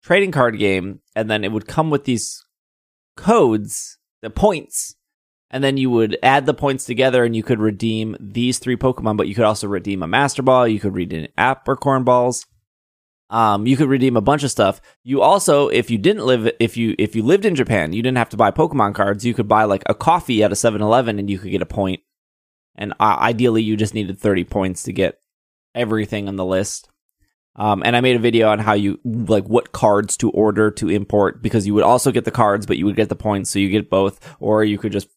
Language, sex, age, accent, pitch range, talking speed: English, male, 20-39, American, 100-125 Hz, 235 wpm